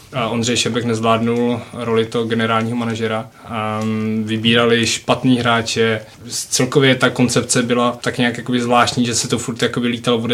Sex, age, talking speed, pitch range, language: male, 20-39, 130 wpm, 115-135 Hz, Czech